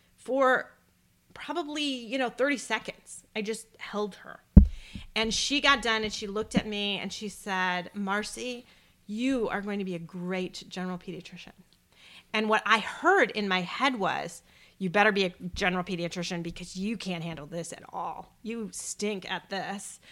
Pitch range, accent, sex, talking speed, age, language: 185-225 Hz, American, female, 170 wpm, 40-59, English